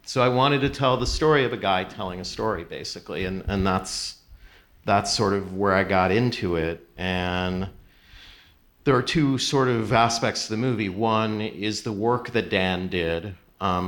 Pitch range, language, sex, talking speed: 90-110 Hz, English, male, 185 wpm